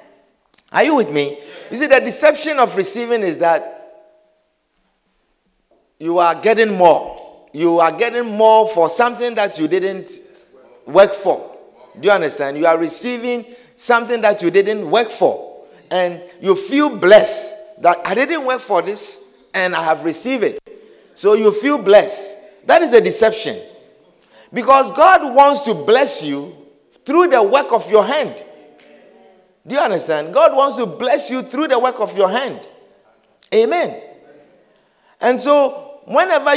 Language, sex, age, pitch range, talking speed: English, male, 50-69, 200-310 Hz, 150 wpm